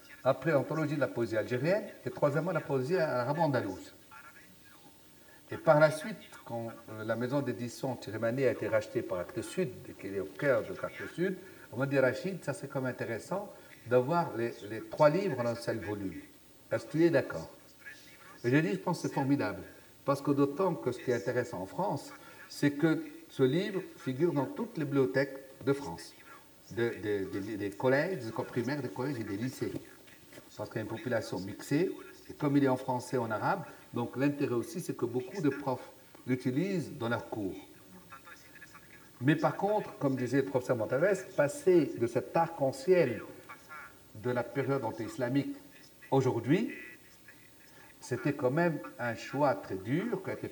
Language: Spanish